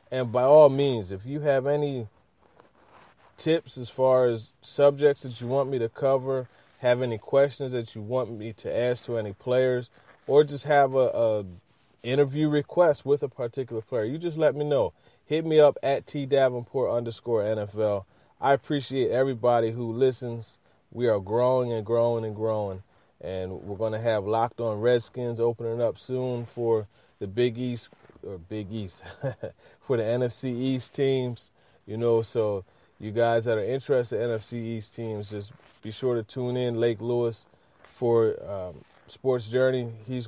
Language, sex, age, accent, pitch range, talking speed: English, male, 30-49, American, 110-125 Hz, 170 wpm